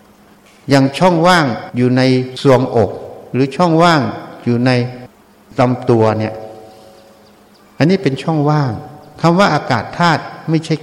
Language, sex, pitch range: Thai, male, 115-160 Hz